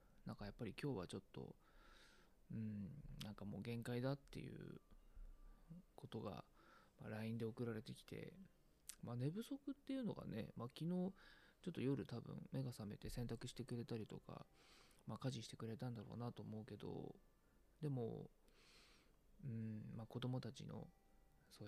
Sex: male